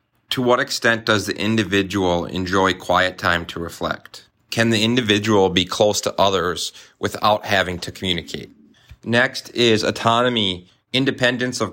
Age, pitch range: 30-49, 95-115 Hz